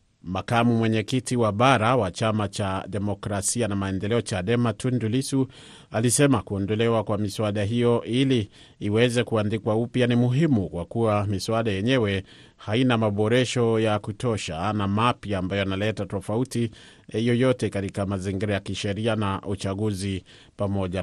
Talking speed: 130 wpm